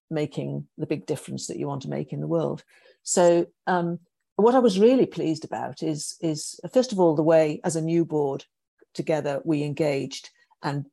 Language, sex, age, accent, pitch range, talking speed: English, female, 50-69, British, 160-195 Hz, 200 wpm